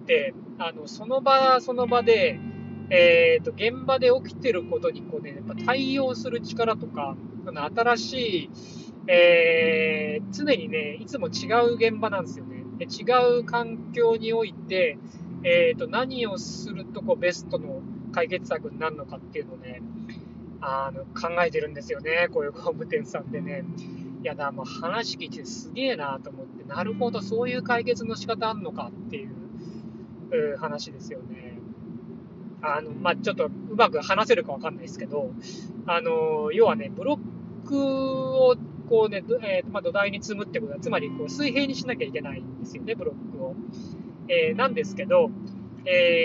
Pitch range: 220-280 Hz